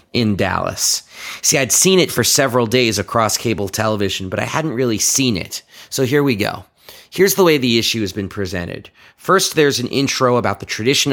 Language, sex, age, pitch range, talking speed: English, male, 30-49, 100-130 Hz, 200 wpm